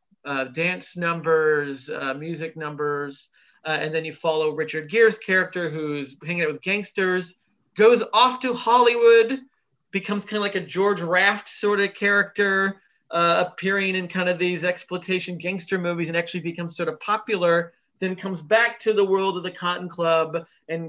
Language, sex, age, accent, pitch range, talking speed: English, male, 30-49, American, 150-195 Hz, 170 wpm